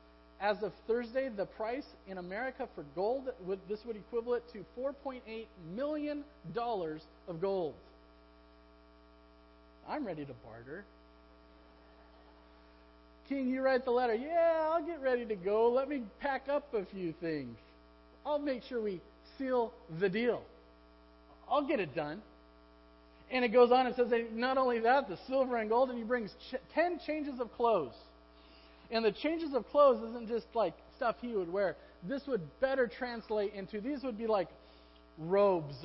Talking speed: 155 wpm